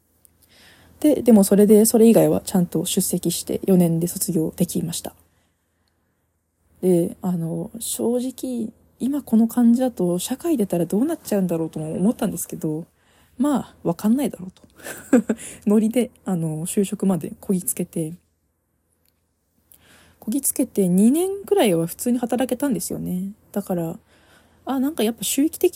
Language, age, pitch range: Japanese, 20-39, 160-225 Hz